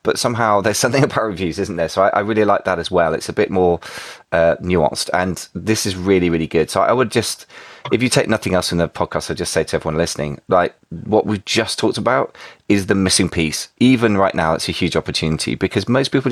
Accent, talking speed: British, 245 wpm